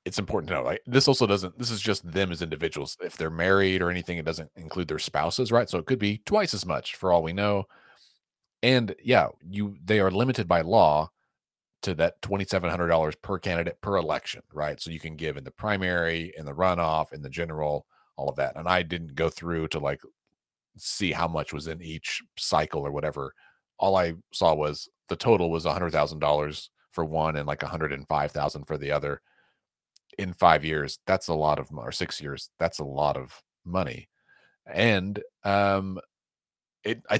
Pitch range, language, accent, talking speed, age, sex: 80-100 Hz, English, American, 190 wpm, 30-49, male